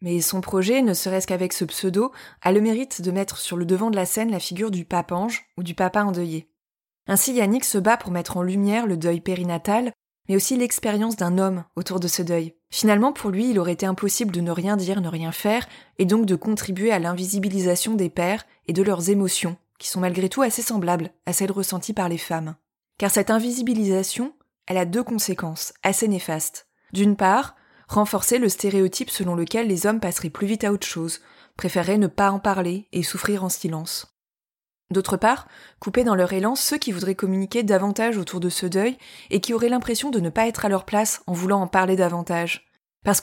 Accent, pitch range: French, 180-220 Hz